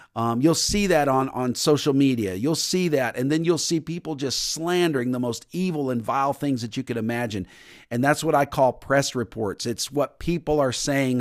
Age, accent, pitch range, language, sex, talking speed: 50-69, American, 130-165 Hz, English, male, 215 wpm